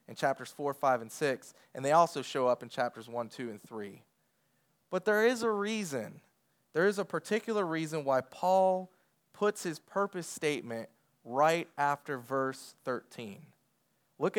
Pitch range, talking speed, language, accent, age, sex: 130-180 Hz, 160 wpm, English, American, 20-39, male